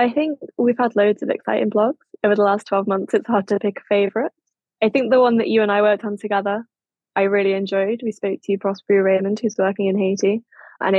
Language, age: English, 10-29